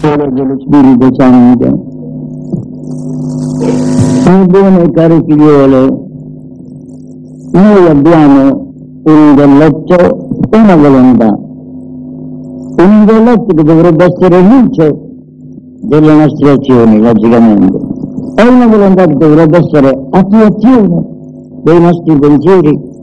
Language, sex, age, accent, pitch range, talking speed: Italian, male, 60-79, Indian, 130-195 Hz, 85 wpm